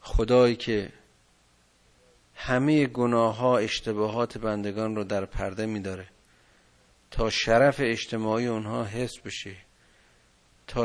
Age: 50-69